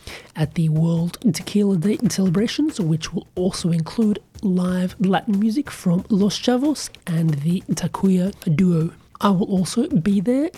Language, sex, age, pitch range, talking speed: English, male, 30-49, 170-205 Hz, 140 wpm